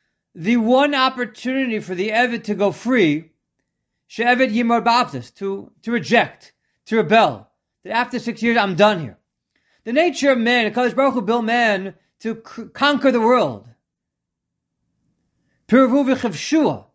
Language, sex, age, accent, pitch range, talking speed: English, male, 40-59, American, 205-250 Hz, 115 wpm